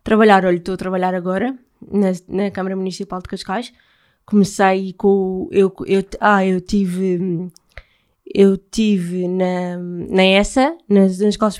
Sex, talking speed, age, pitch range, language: female, 140 wpm, 20-39, 180-200 Hz, Portuguese